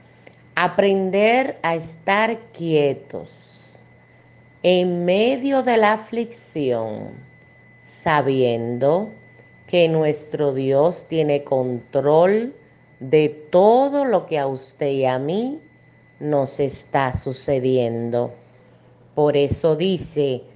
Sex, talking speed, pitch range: female, 90 wpm, 125-180 Hz